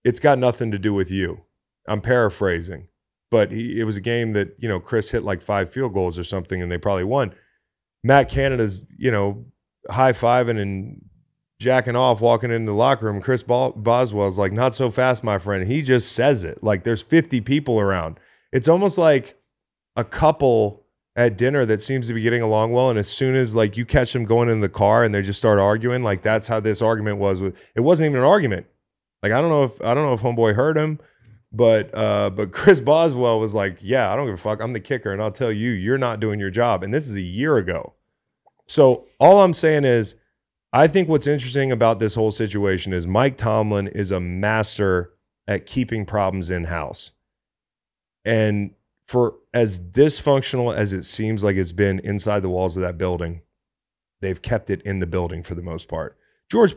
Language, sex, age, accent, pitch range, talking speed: English, male, 20-39, American, 100-130 Hz, 205 wpm